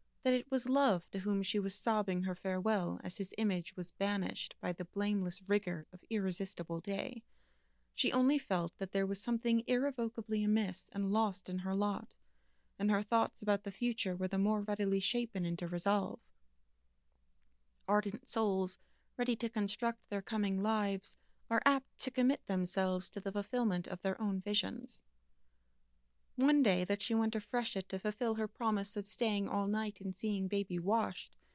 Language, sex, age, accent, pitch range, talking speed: English, female, 30-49, American, 185-225 Hz, 170 wpm